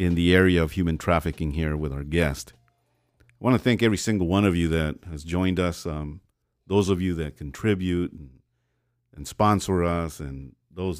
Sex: male